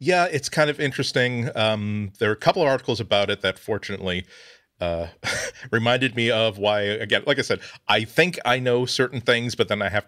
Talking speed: 210 wpm